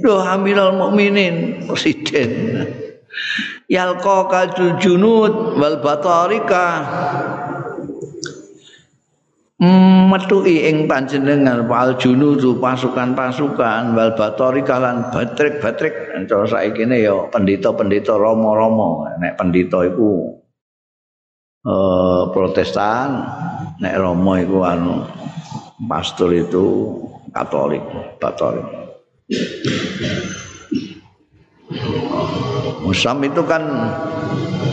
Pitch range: 105-165 Hz